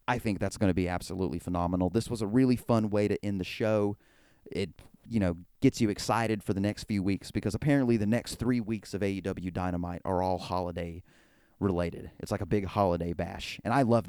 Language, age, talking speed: English, 30-49, 215 wpm